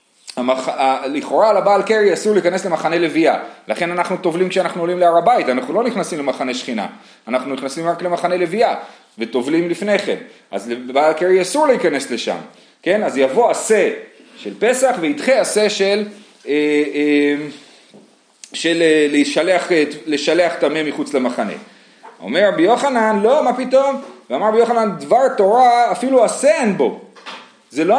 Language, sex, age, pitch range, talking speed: Hebrew, male, 30-49, 150-220 Hz, 145 wpm